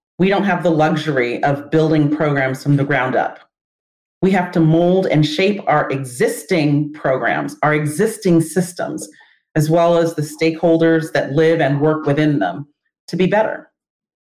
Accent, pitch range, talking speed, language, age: American, 155-190 Hz, 160 wpm, English, 40-59